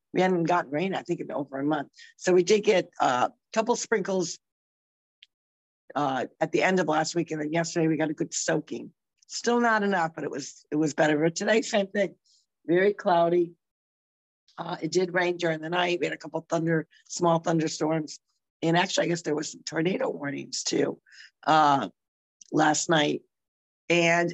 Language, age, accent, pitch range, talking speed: English, 50-69, American, 150-175 Hz, 185 wpm